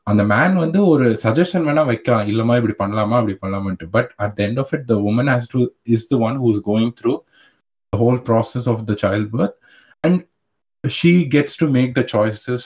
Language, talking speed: Tamil, 200 wpm